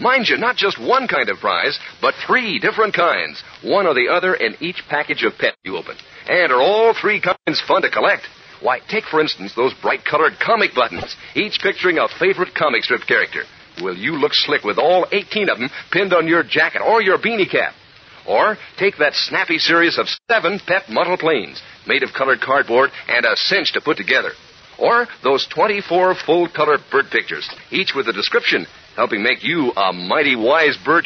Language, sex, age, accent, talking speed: English, male, 50-69, American, 195 wpm